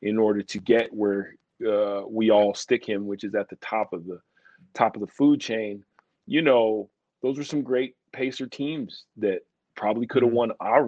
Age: 40-59